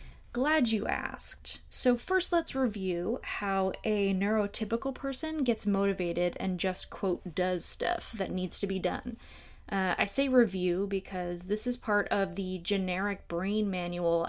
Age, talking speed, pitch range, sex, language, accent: 20-39, 150 wpm, 185-230 Hz, female, English, American